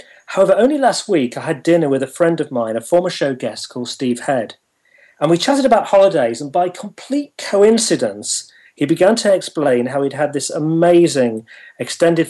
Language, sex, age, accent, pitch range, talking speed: English, male, 40-59, British, 135-175 Hz, 185 wpm